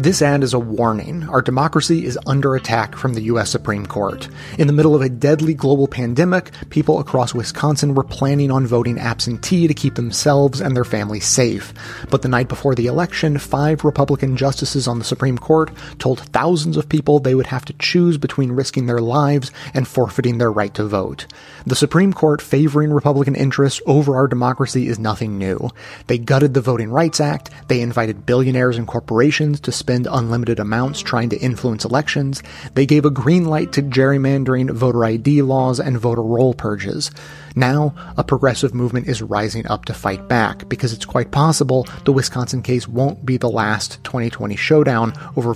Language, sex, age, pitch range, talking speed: English, male, 30-49, 115-140 Hz, 185 wpm